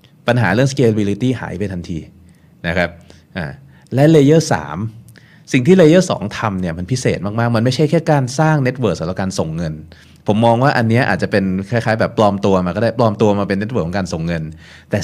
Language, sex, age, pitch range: Thai, male, 30-49, 95-130 Hz